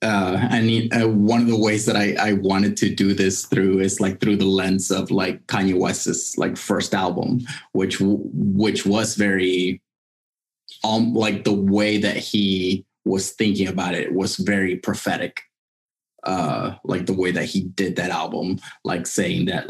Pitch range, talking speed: 95-115 Hz, 175 wpm